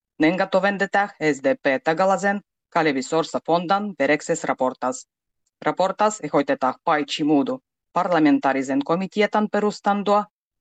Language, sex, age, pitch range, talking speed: Finnish, female, 30-49, 145-195 Hz, 80 wpm